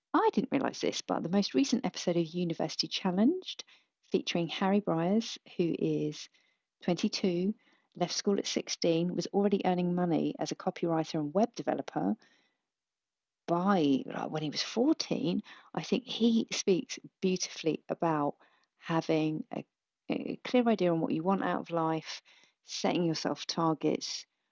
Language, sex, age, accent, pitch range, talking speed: English, female, 40-59, British, 155-195 Hz, 140 wpm